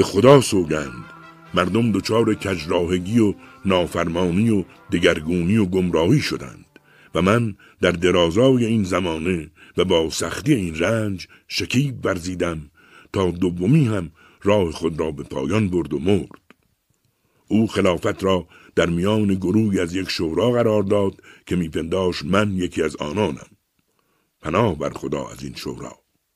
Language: Persian